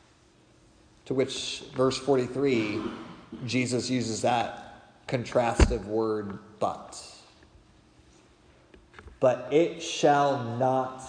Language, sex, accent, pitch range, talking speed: English, male, American, 120-165 Hz, 75 wpm